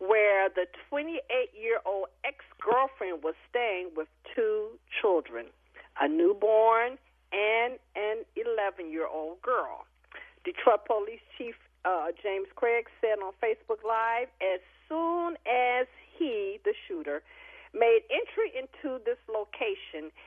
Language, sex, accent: English, female, American